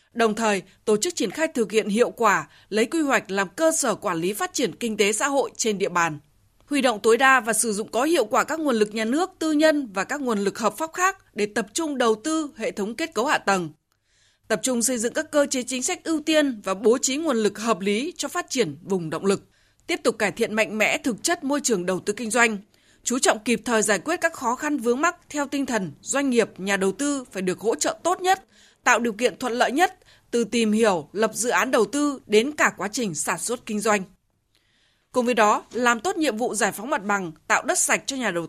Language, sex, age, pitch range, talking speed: Vietnamese, female, 20-39, 205-275 Hz, 255 wpm